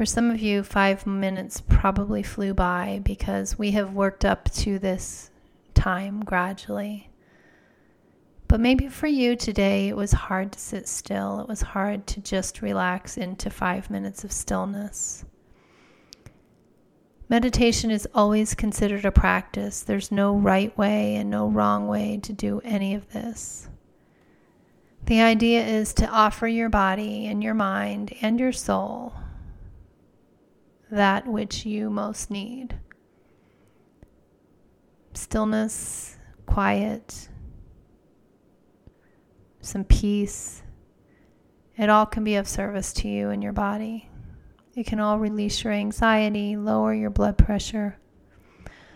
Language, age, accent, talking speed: English, 30-49, American, 125 wpm